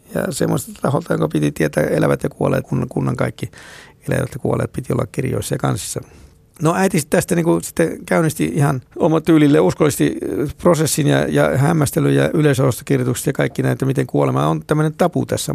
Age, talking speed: 60-79, 185 wpm